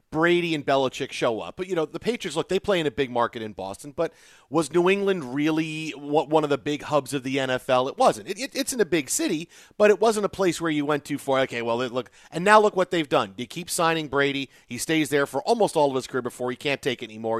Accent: American